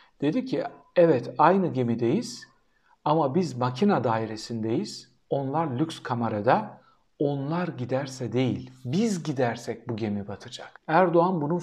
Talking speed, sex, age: 115 wpm, male, 60-79